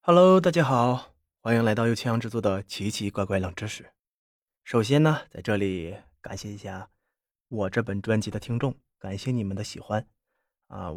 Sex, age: male, 20-39